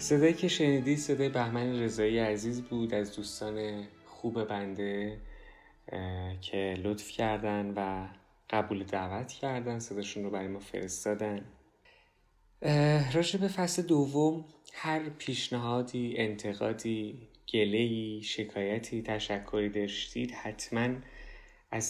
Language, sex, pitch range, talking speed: Persian, male, 105-125 Hz, 100 wpm